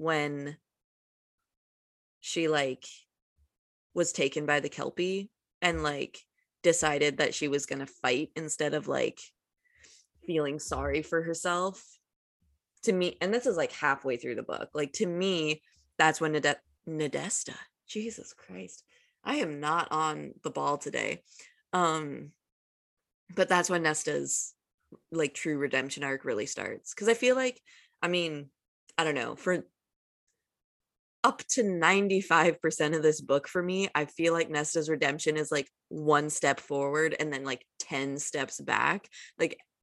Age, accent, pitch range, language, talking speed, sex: 20-39, American, 145-195 Hz, English, 145 wpm, female